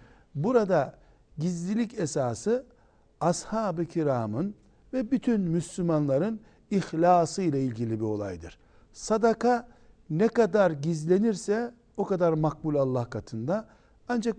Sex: male